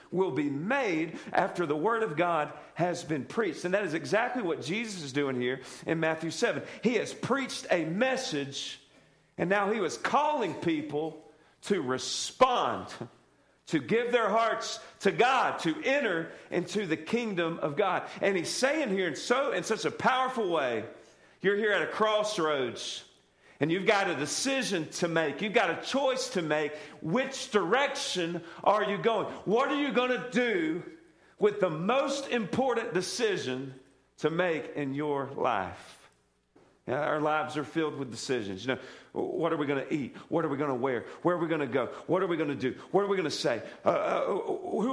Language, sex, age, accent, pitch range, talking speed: English, male, 40-59, American, 150-230 Hz, 185 wpm